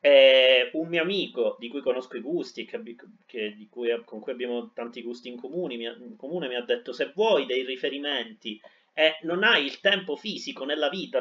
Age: 30-49